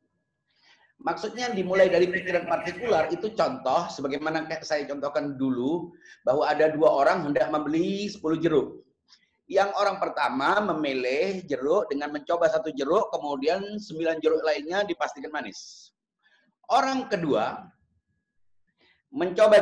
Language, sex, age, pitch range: Indonesian, male, 30-49, 150-205 Hz